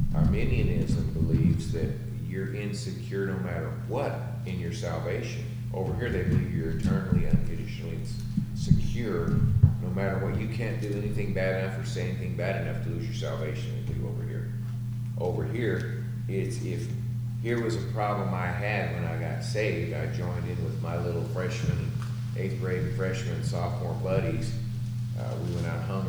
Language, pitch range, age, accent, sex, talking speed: English, 115-120 Hz, 40-59, American, male, 165 wpm